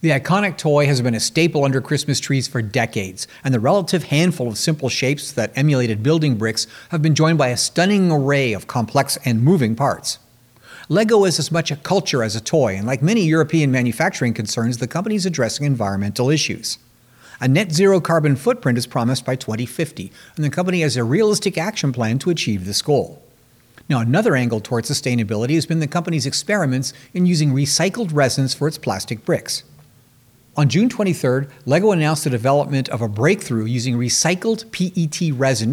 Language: English